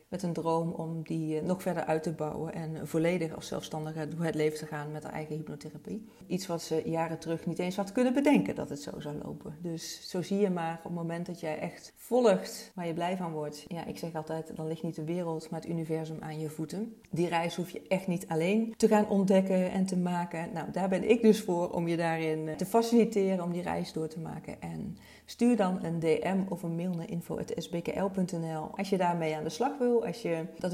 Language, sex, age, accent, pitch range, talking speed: Dutch, female, 40-59, Dutch, 155-185 Hz, 230 wpm